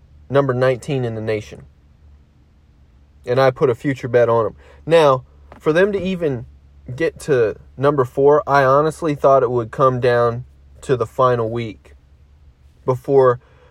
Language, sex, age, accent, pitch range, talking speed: English, male, 30-49, American, 105-145 Hz, 150 wpm